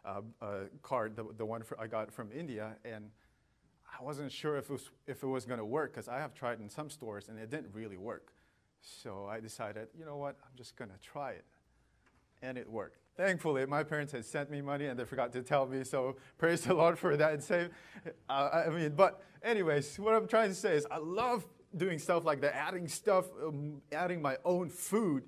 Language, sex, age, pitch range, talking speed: English, male, 30-49, 130-170 Hz, 230 wpm